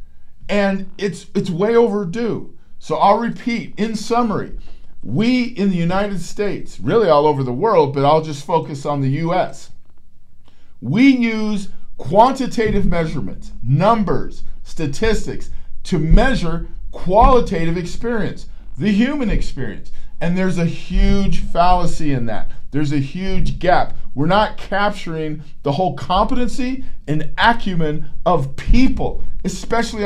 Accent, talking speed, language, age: American, 125 wpm, English, 50-69